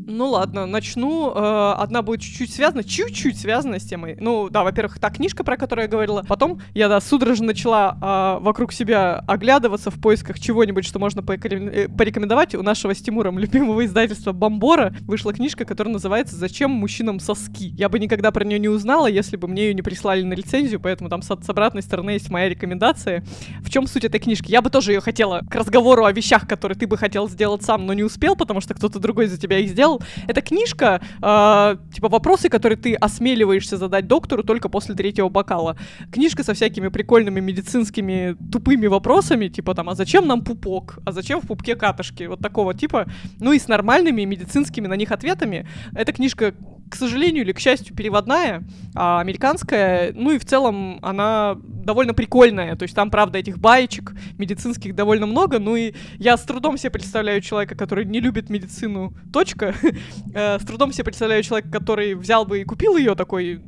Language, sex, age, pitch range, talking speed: Russian, female, 20-39, 195-235 Hz, 190 wpm